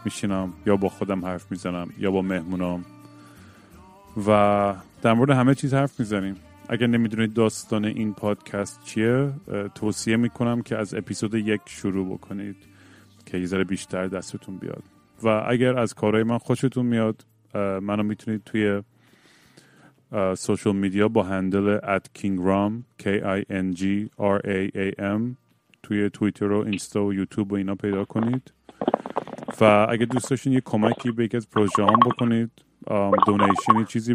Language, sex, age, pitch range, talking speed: Persian, male, 30-49, 100-115 Hz, 130 wpm